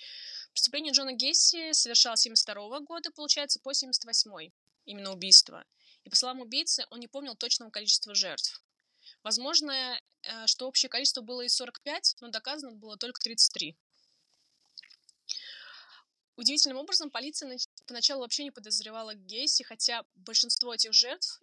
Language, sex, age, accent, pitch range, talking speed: Russian, female, 20-39, native, 220-270 Hz, 125 wpm